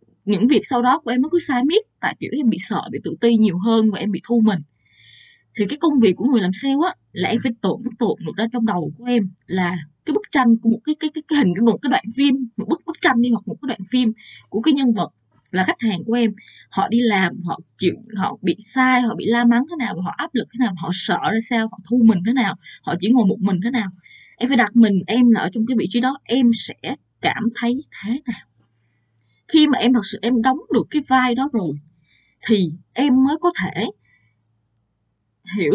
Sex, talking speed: female, 250 wpm